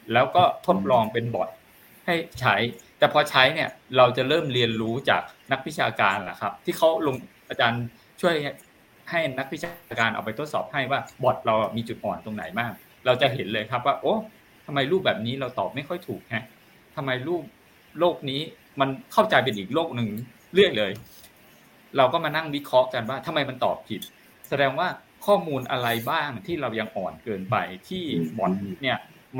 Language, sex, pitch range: Thai, male, 115-160 Hz